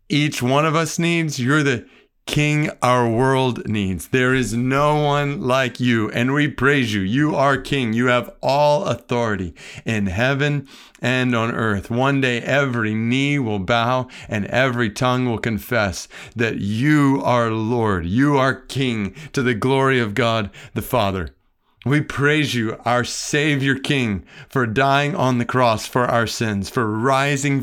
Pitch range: 120-145 Hz